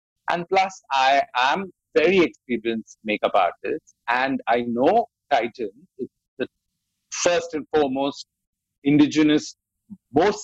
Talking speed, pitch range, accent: 110 wpm, 125-175 Hz, Indian